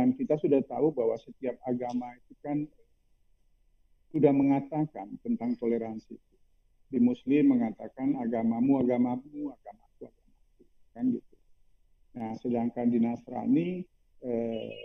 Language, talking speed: English, 95 wpm